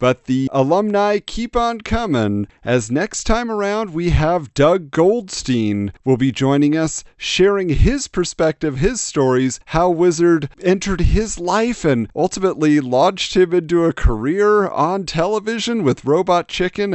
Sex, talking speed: male, 140 wpm